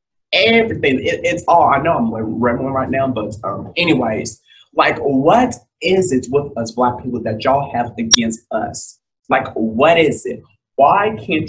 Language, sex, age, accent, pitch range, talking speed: English, male, 30-49, American, 115-160 Hz, 170 wpm